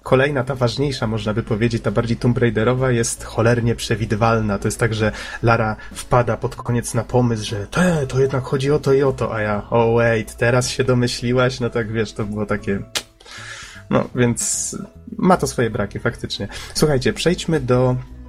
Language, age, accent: Polish, 30-49, native